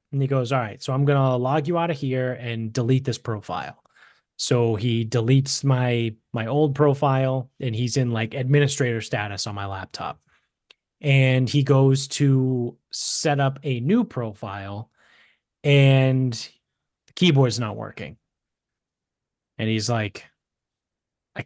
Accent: American